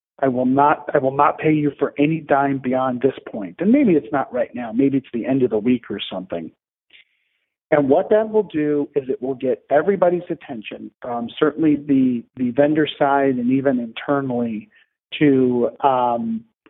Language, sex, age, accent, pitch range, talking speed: English, male, 40-59, American, 135-170 Hz, 185 wpm